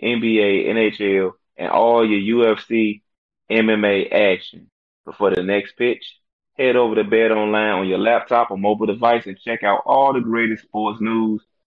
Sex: male